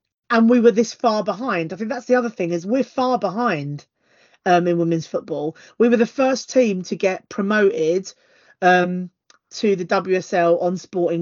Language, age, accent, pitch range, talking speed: English, 40-59, British, 180-230 Hz, 180 wpm